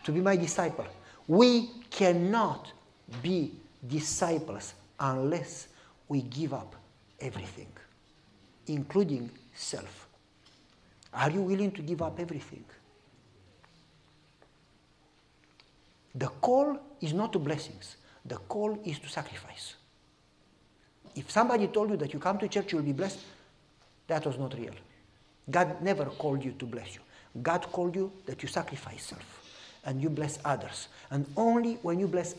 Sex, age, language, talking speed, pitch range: male, 50-69, English, 135 wpm, 130-190 Hz